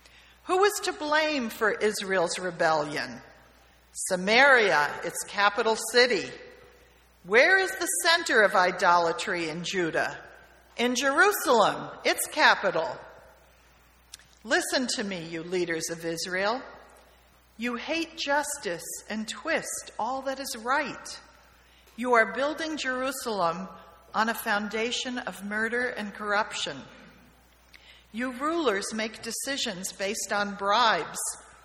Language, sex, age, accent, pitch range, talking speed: English, female, 50-69, American, 180-250 Hz, 110 wpm